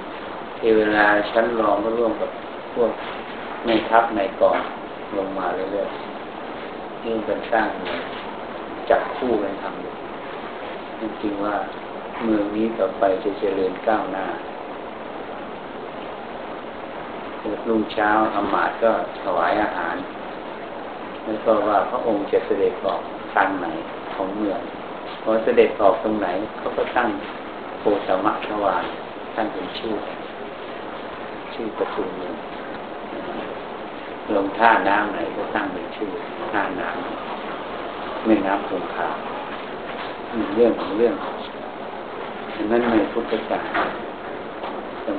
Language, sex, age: Thai, male, 60-79